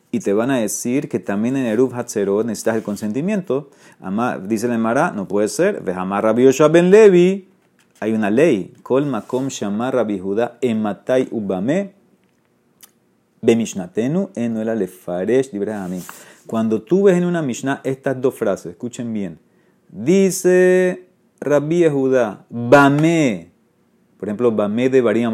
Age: 30-49